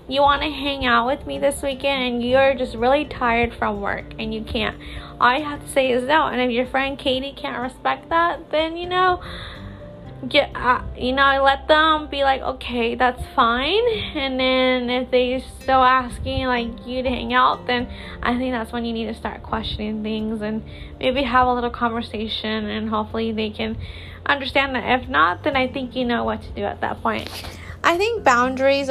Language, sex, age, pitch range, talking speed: English, female, 20-39, 220-270 Hz, 205 wpm